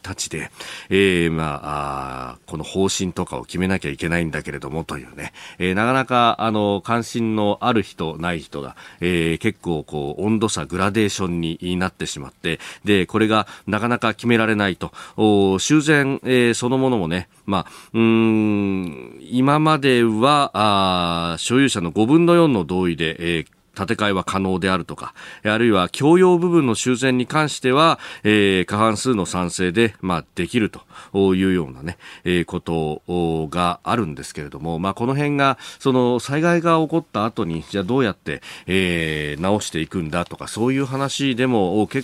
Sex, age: male, 40-59